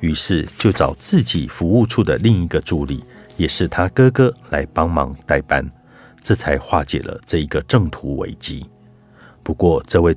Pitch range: 80-115 Hz